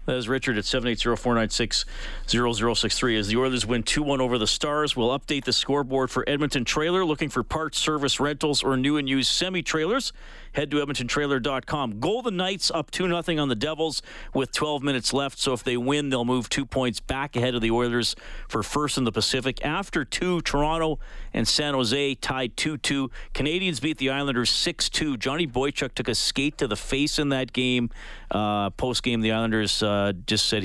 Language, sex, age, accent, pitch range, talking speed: English, male, 40-59, American, 120-150 Hz, 200 wpm